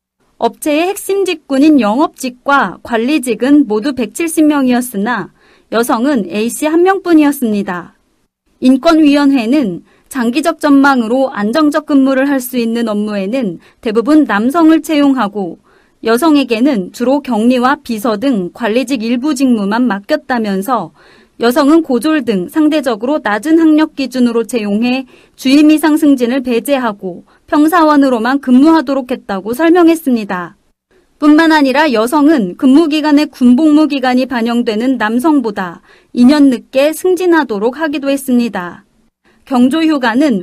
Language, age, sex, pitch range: Korean, 30-49, female, 235-305 Hz